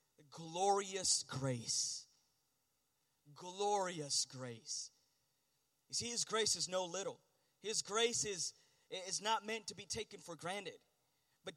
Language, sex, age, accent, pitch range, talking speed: English, male, 30-49, American, 200-285 Hz, 120 wpm